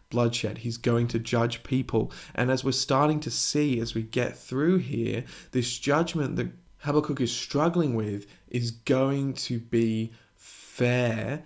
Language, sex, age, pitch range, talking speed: English, male, 20-39, 115-145 Hz, 150 wpm